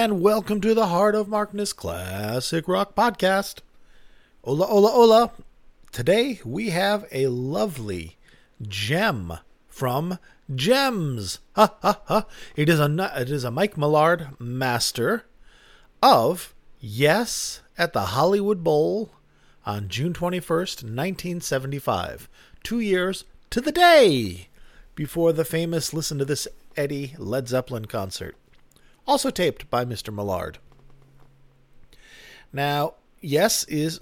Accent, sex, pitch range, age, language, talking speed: American, male, 115-180 Hz, 40-59, English, 115 wpm